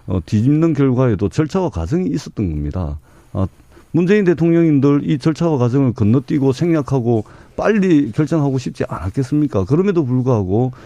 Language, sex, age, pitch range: Korean, male, 50-69, 110-150 Hz